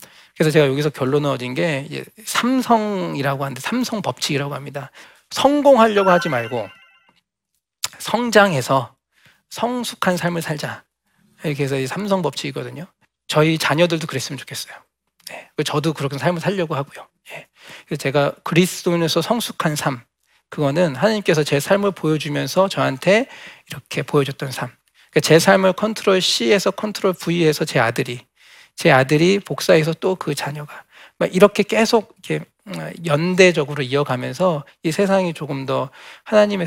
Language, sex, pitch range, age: Korean, male, 145-190 Hz, 40-59